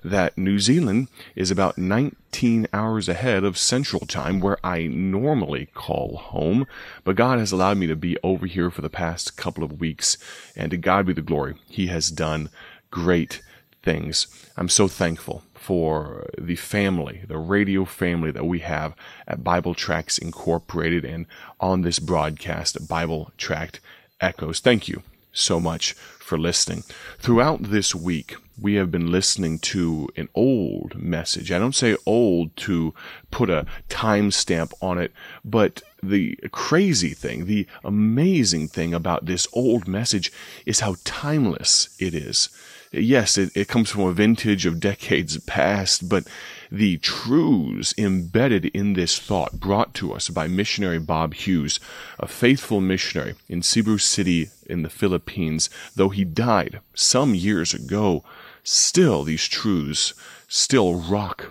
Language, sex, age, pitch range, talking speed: English, male, 30-49, 85-105 Hz, 150 wpm